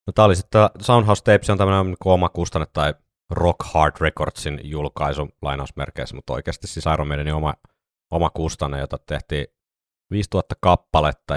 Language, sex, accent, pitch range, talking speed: Finnish, male, native, 75-90 Hz, 155 wpm